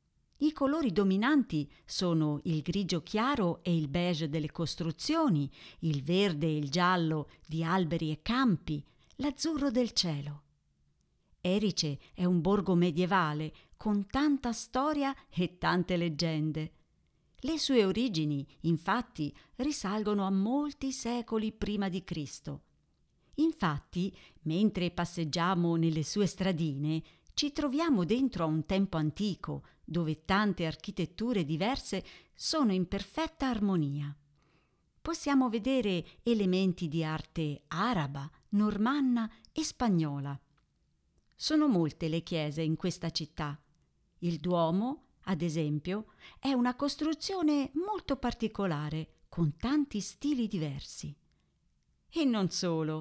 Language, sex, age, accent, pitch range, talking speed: Italian, female, 50-69, native, 160-235 Hz, 110 wpm